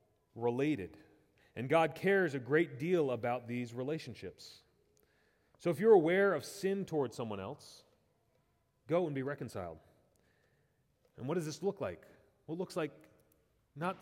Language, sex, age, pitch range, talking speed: English, male, 30-49, 125-165 Hz, 145 wpm